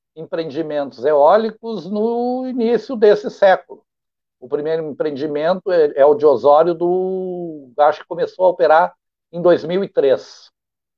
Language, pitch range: Portuguese, 150-225 Hz